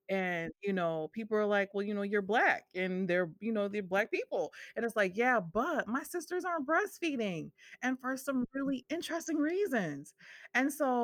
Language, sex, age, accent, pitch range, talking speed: English, female, 30-49, American, 170-225 Hz, 190 wpm